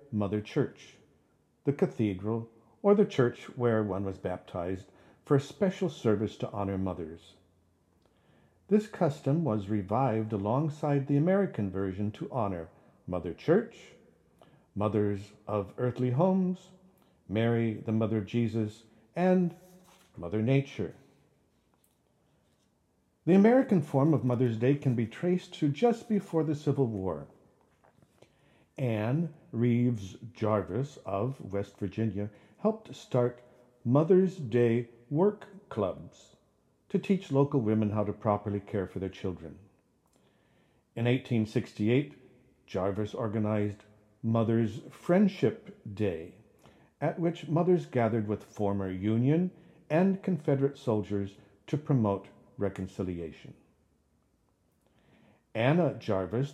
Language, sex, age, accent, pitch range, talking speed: English, male, 50-69, American, 105-145 Hz, 105 wpm